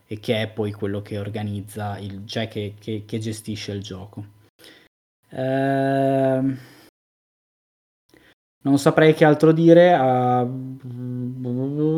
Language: Italian